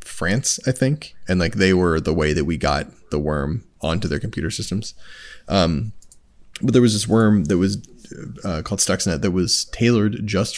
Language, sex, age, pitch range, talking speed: English, male, 20-39, 95-115 Hz, 185 wpm